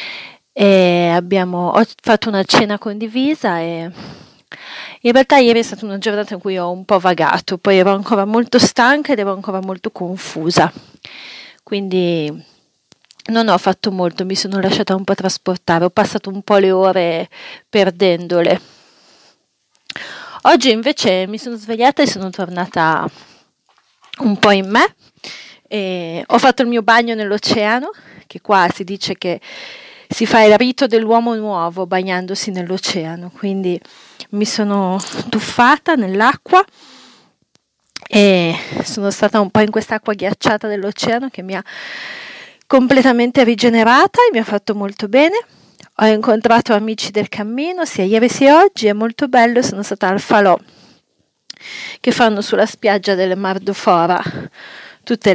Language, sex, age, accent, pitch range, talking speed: Italian, female, 30-49, native, 190-235 Hz, 140 wpm